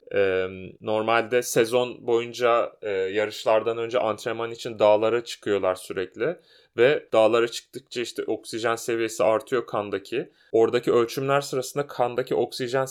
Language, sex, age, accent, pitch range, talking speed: Turkish, male, 30-49, native, 115-140 Hz, 105 wpm